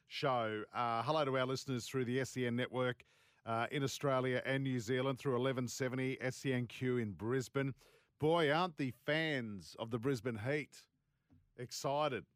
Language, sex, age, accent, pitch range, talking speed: English, male, 40-59, Australian, 125-150 Hz, 145 wpm